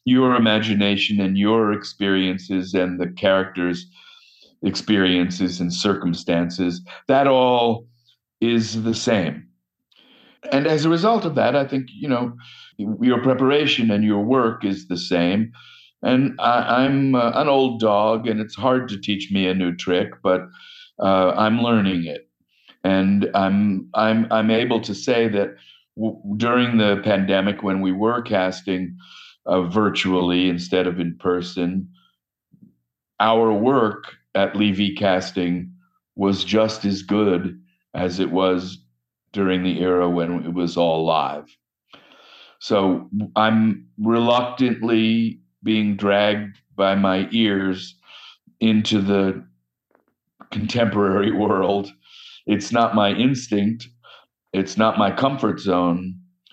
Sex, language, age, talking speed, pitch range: male, English, 50-69, 125 wpm, 90-115 Hz